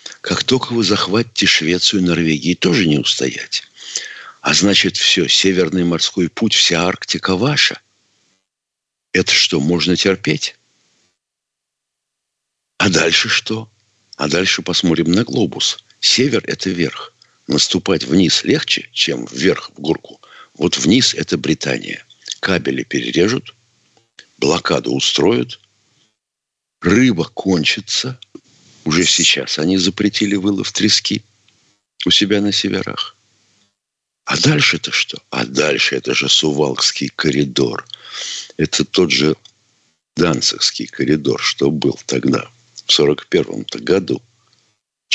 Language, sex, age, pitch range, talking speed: Russian, male, 60-79, 90-120 Hz, 110 wpm